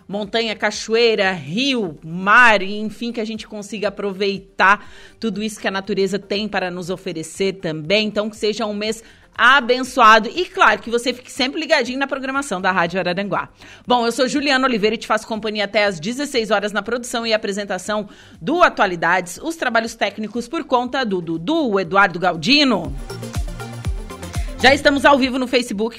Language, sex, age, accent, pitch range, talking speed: Portuguese, female, 30-49, Brazilian, 195-255 Hz, 170 wpm